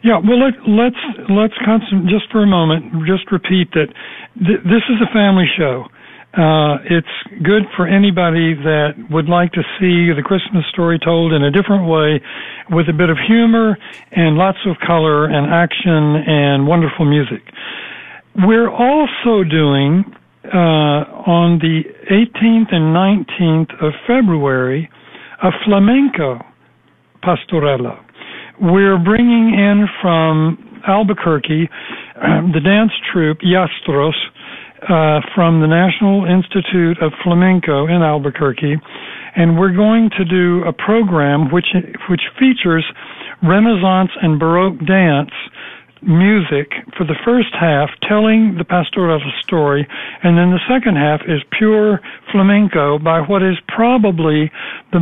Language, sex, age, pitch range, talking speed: English, male, 60-79, 160-205 Hz, 130 wpm